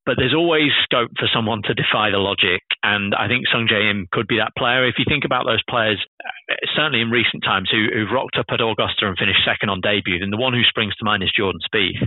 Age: 30-49